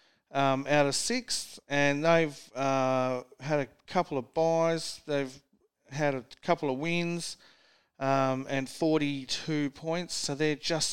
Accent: Australian